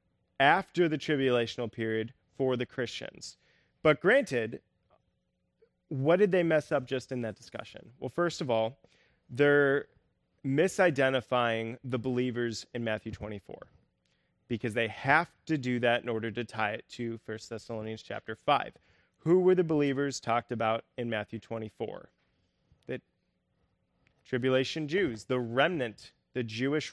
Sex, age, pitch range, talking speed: male, 20-39, 115-145 Hz, 135 wpm